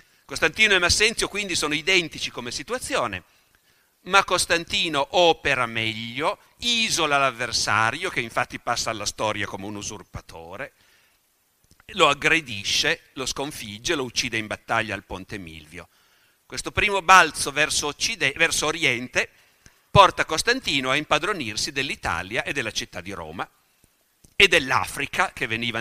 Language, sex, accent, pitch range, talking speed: Italian, male, native, 115-180 Hz, 125 wpm